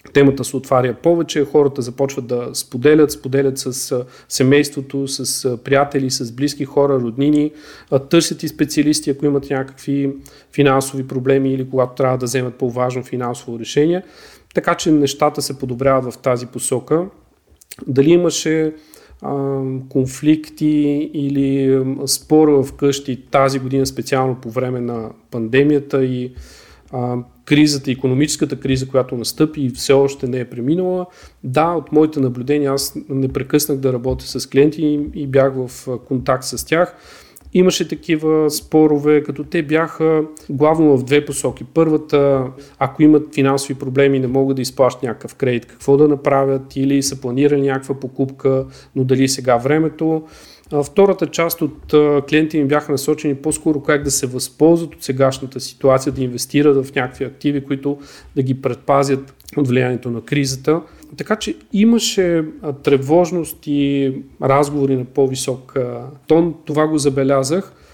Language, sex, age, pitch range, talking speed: Bulgarian, male, 40-59, 130-150 Hz, 140 wpm